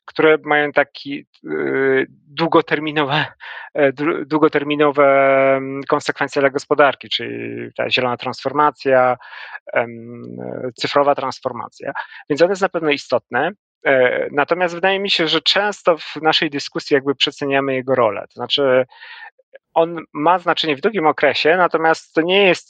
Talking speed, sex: 120 wpm, male